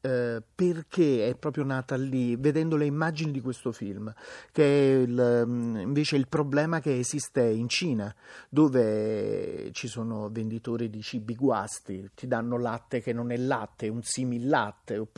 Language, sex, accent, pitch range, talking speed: Italian, male, native, 120-155 Hz, 145 wpm